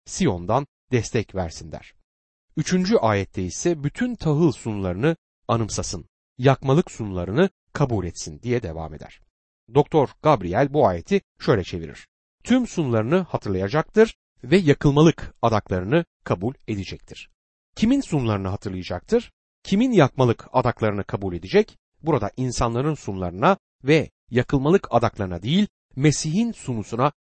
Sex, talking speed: male, 110 wpm